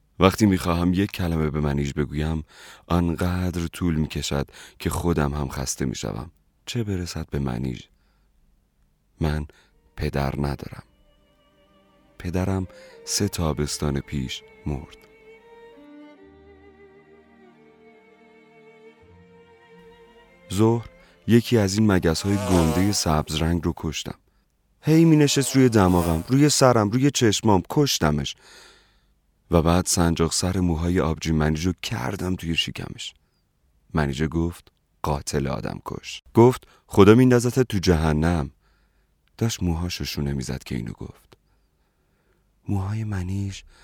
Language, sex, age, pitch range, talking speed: Persian, male, 30-49, 75-105 Hz, 105 wpm